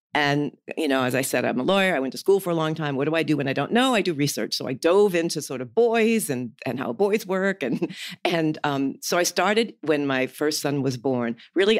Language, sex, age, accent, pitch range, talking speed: English, female, 50-69, American, 140-185 Hz, 270 wpm